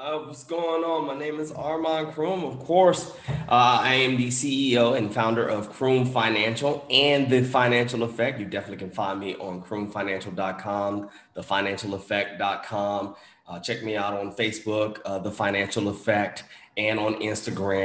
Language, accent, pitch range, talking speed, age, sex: English, American, 100-120 Hz, 150 wpm, 20-39, male